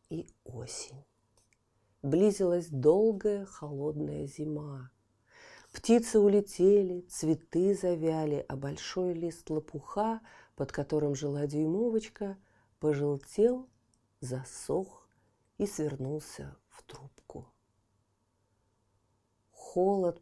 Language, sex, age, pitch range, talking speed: Russian, female, 40-59, 120-190 Hz, 75 wpm